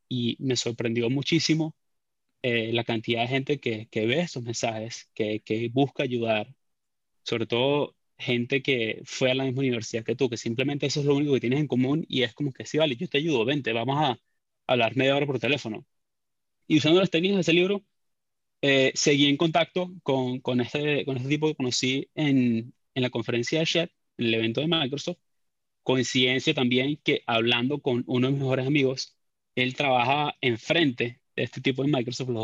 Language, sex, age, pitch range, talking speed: Spanish, male, 20-39, 115-145 Hz, 190 wpm